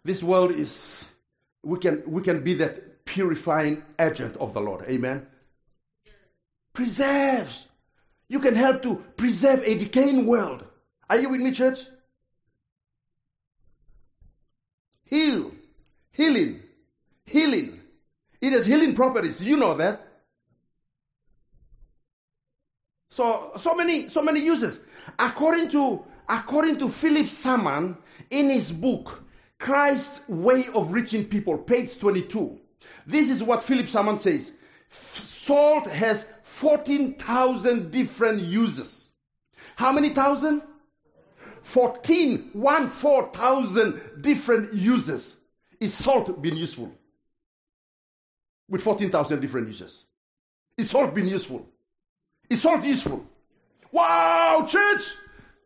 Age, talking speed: 50-69, 110 wpm